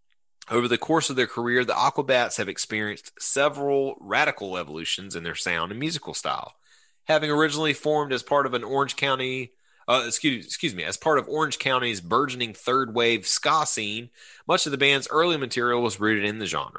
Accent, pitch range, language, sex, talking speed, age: American, 105-140 Hz, English, male, 190 wpm, 30-49